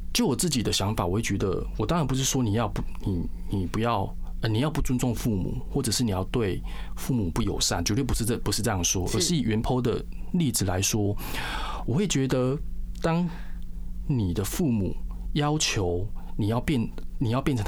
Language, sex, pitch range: Chinese, male, 95-130 Hz